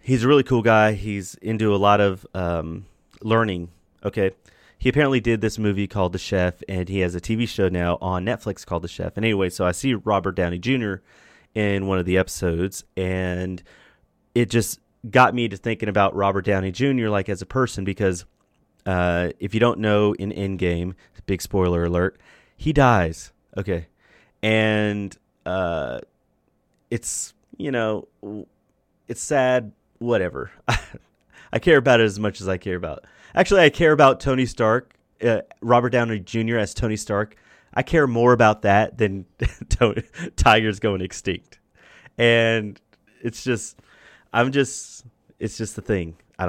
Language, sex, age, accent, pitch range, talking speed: English, male, 30-49, American, 95-115 Hz, 160 wpm